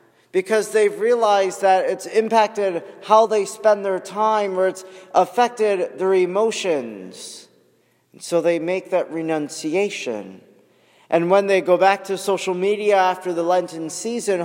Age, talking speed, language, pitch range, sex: 40-59, 135 wpm, English, 170-215 Hz, male